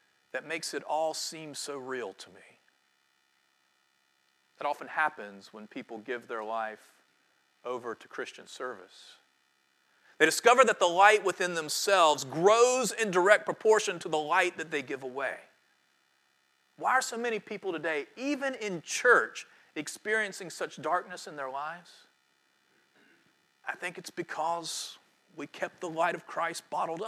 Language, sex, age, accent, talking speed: English, male, 40-59, American, 145 wpm